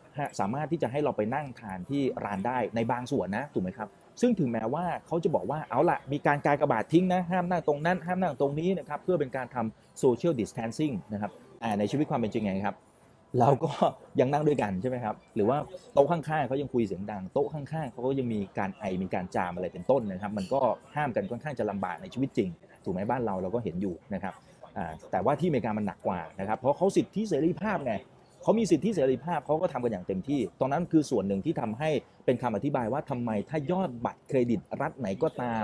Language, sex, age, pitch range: Thai, male, 30-49, 115-165 Hz